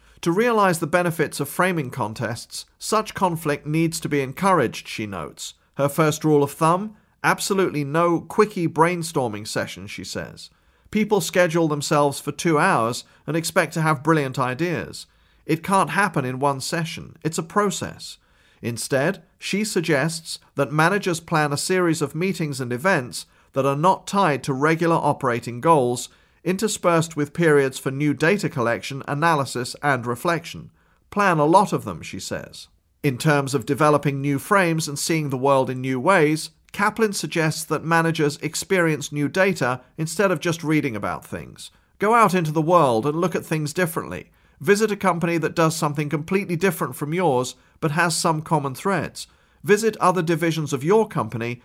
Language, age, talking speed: English, 40-59, 165 wpm